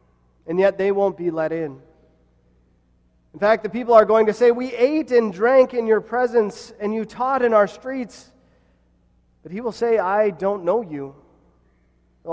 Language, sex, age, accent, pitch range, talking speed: English, male, 30-49, American, 125-210 Hz, 180 wpm